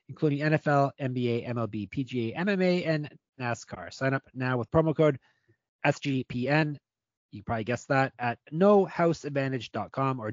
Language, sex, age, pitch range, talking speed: English, male, 30-49, 120-145 Hz, 130 wpm